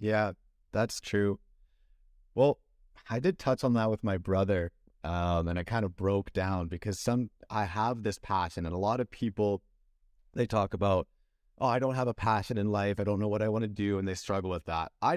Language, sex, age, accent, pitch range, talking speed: English, male, 30-49, American, 95-120 Hz, 220 wpm